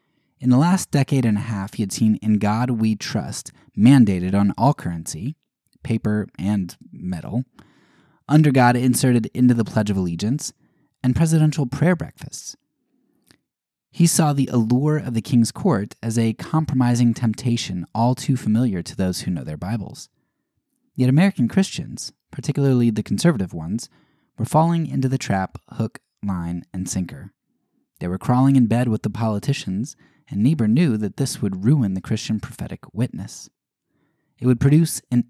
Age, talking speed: 20-39, 160 wpm